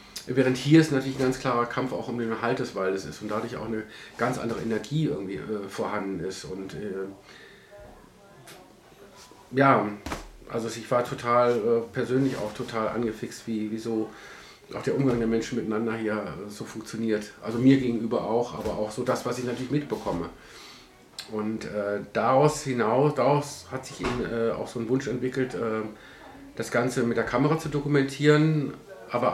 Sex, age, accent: male, 50-69, German